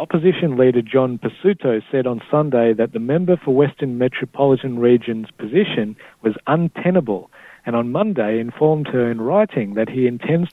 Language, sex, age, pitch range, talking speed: Hebrew, male, 50-69, 120-150 Hz, 155 wpm